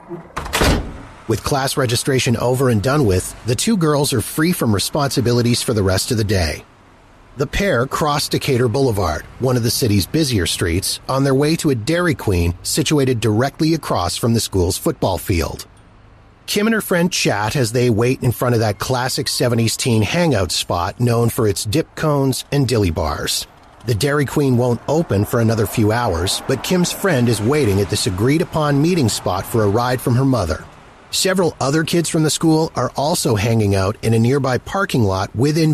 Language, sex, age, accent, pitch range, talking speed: English, male, 40-59, American, 105-145 Hz, 190 wpm